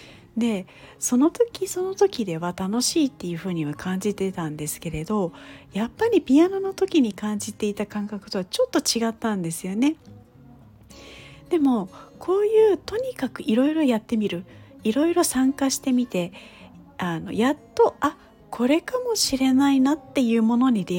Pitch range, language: 175-290 Hz, Japanese